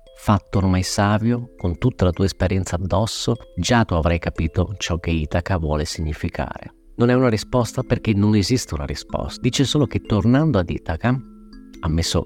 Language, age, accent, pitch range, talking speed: Italian, 50-69, native, 85-115 Hz, 165 wpm